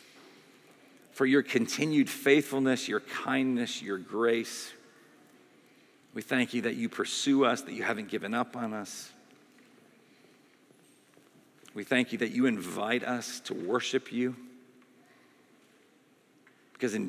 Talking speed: 125 wpm